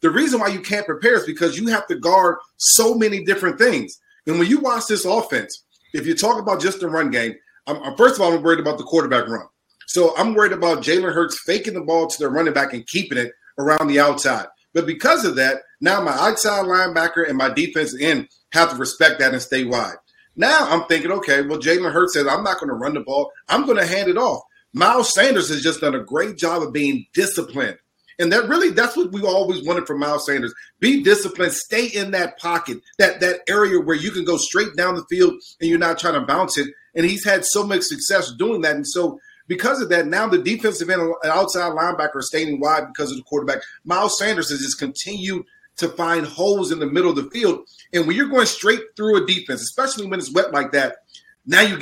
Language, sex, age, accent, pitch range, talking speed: English, male, 40-59, American, 160-220 Hz, 230 wpm